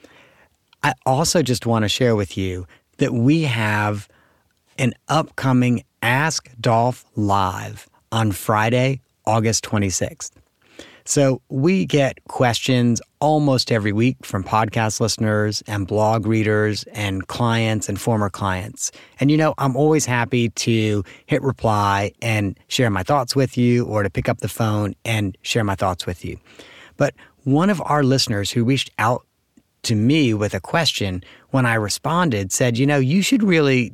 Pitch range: 105-130 Hz